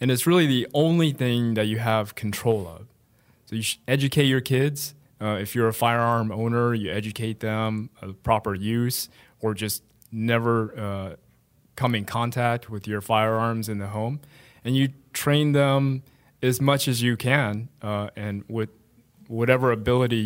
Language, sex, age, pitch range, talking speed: English, male, 20-39, 110-130 Hz, 165 wpm